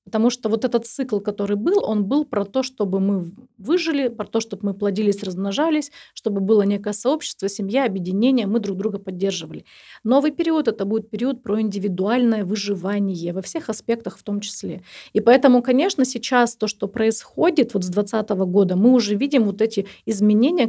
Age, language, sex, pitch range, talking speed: 30-49, Russian, female, 205-250 Hz, 175 wpm